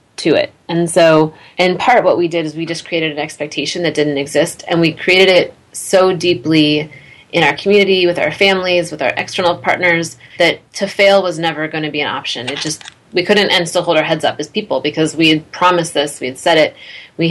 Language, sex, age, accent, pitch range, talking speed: English, female, 30-49, American, 150-175 Hz, 230 wpm